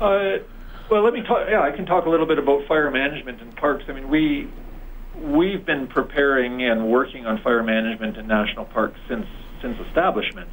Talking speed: 195 wpm